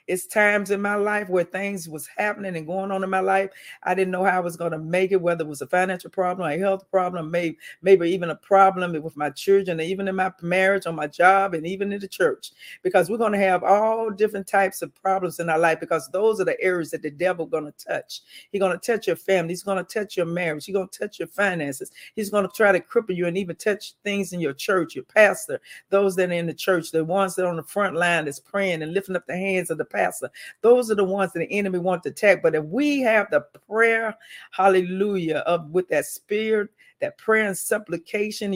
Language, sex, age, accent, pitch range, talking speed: English, female, 50-69, American, 170-205 Hz, 250 wpm